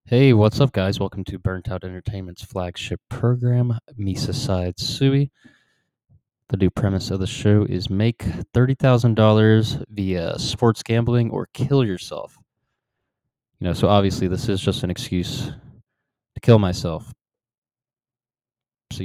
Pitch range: 100-125 Hz